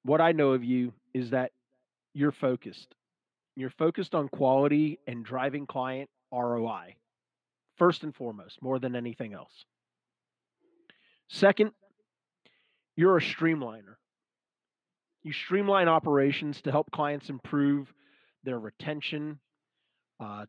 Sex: male